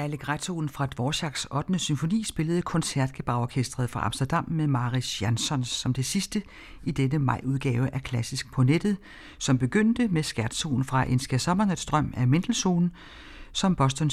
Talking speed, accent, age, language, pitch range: 140 wpm, native, 60-79, Danish, 125-170 Hz